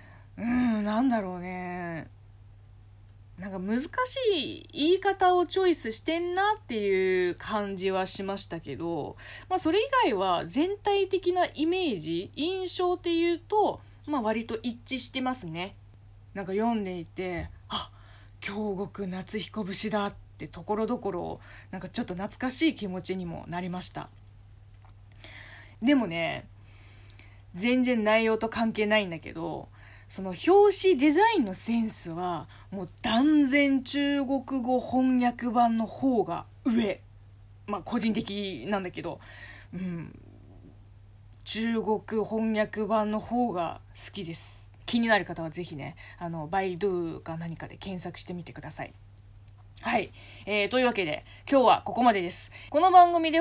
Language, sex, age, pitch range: Japanese, female, 20-39, 160-265 Hz